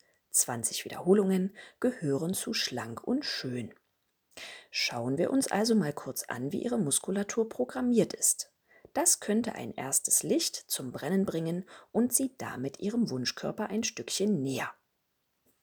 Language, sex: German, female